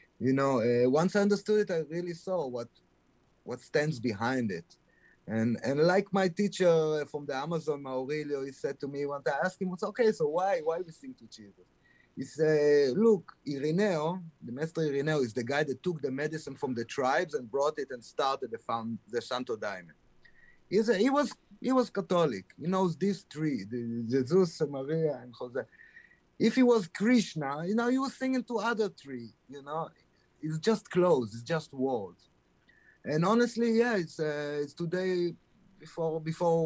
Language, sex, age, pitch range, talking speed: English, male, 30-49, 125-185 Hz, 180 wpm